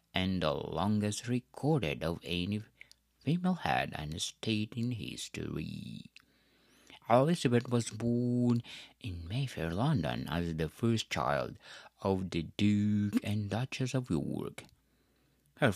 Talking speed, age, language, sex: 115 wpm, 60-79, English, male